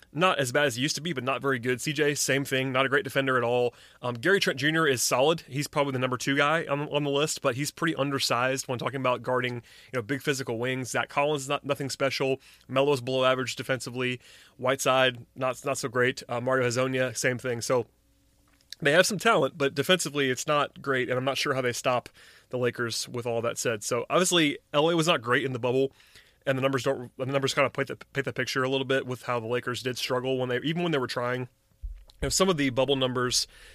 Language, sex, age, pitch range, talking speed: English, male, 30-49, 125-145 Hz, 240 wpm